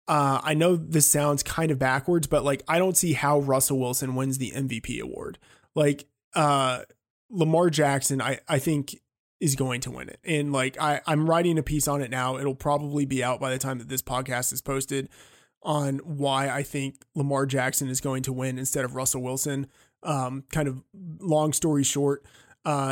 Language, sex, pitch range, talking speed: English, male, 130-150 Hz, 195 wpm